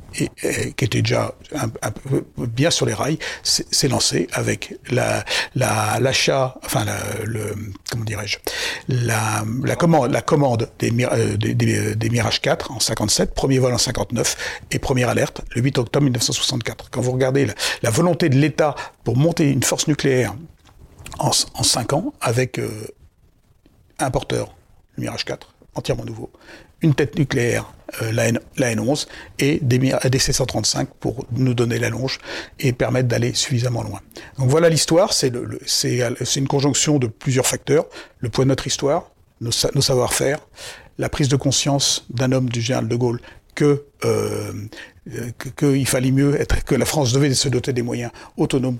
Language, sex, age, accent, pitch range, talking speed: French, male, 60-79, French, 115-140 Hz, 165 wpm